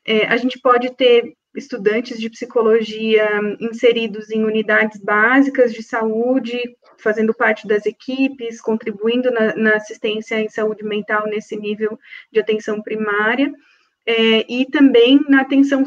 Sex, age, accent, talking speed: female, 20-39, Brazilian, 125 wpm